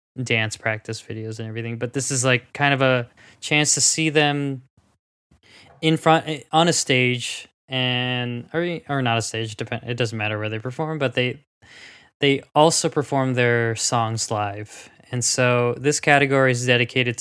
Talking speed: 160 wpm